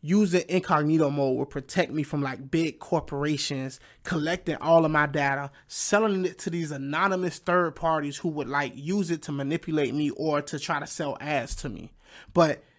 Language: English